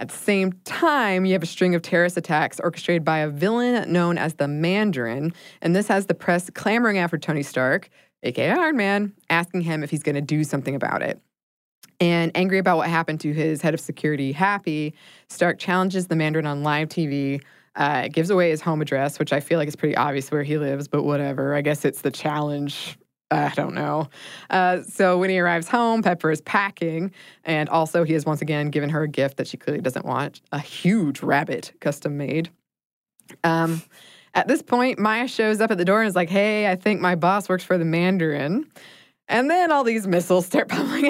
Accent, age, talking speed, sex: American, 20-39, 205 wpm, female